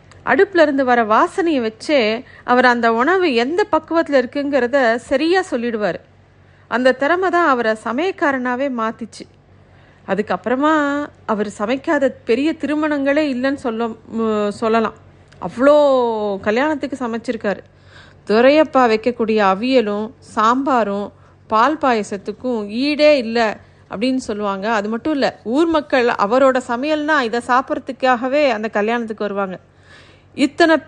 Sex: female